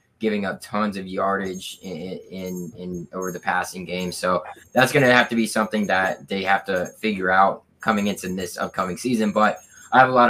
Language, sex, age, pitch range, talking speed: English, male, 20-39, 95-105 Hz, 210 wpm